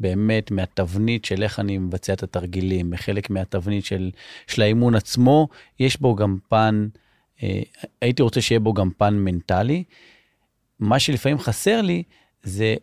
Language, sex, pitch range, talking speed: Hebrew, male, 100-125 Hz, 145 wpm